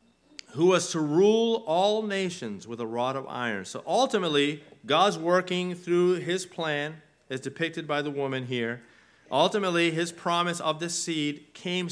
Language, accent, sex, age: English, American, male, 40-59